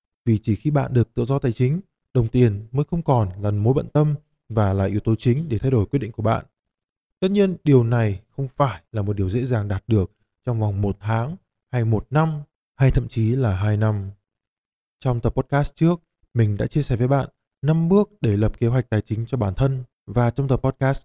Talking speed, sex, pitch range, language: 230 wpm, male, 110-140 Hz, Vietnamese